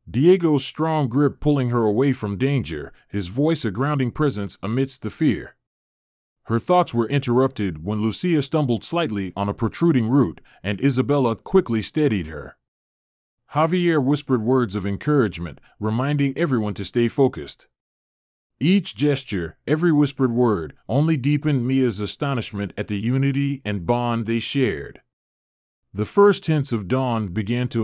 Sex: male